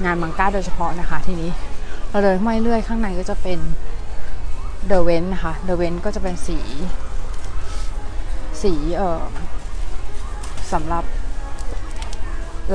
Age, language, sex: 20-39, Thai, female